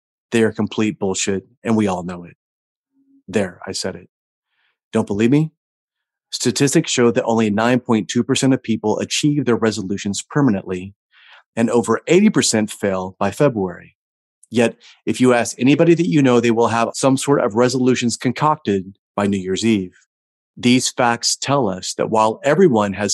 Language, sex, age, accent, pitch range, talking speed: English, male, 30-49, American, 105-130 Hz, 160 wpm